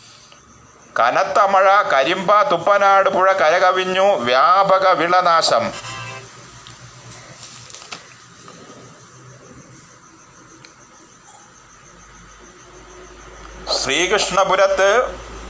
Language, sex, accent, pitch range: Malayalam, male, native, 170-190 Hz